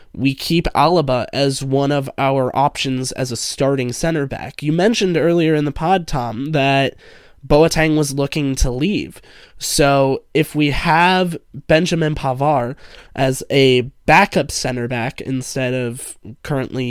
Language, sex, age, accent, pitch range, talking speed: English, male, 20-39, American, 130-155 Hz, 140 wpm